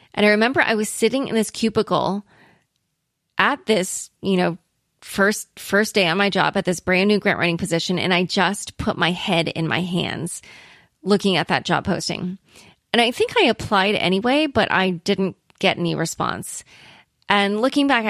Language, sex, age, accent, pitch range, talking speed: English, female, 30-49, American, 180-220 Hz, 180 wpm